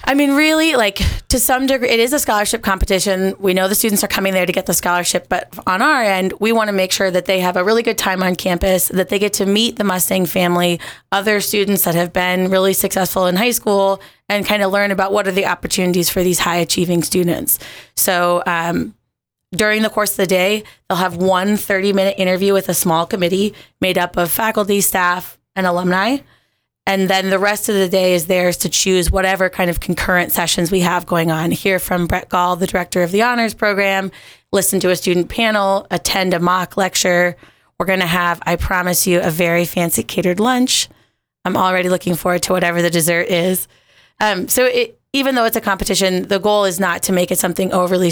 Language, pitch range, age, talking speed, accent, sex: English, 180-205 Hz, 20-39, 220 wpm, American, female